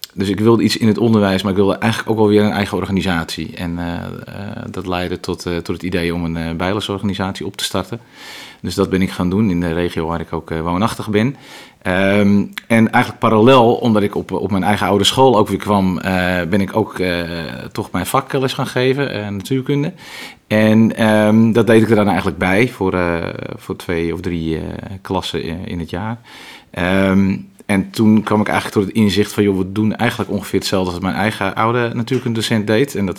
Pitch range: 95-110 Hz